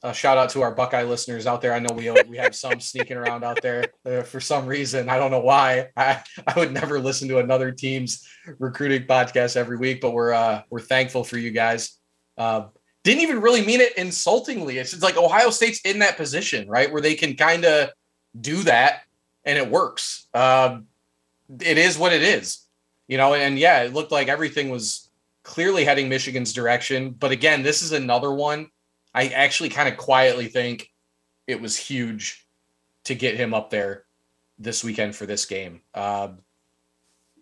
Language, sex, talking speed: English, male, 190 wpm